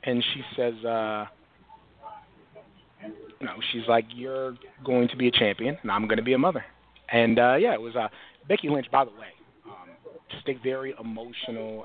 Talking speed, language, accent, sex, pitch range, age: 185 wpm, English, American, male, 115-135 Hz, 30-49